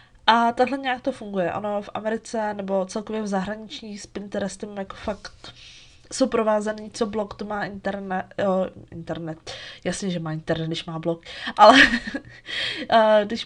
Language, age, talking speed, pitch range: Czech, 20-39, 145 wpm, 185-220 Hz